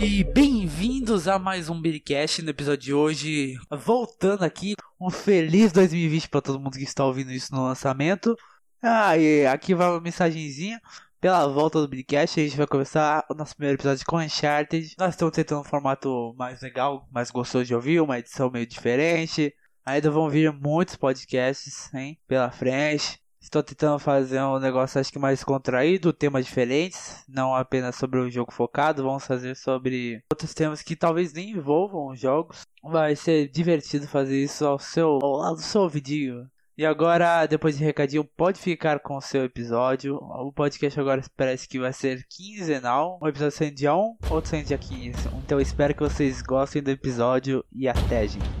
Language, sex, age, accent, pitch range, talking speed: Portuguese, male, 20-39, Brazilian, 135-165 Hz, 180 wpm